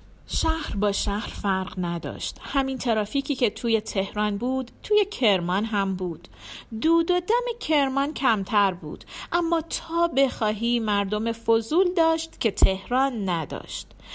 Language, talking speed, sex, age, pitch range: Persian, 125 wpm, female, 40-59, 205-305 Hz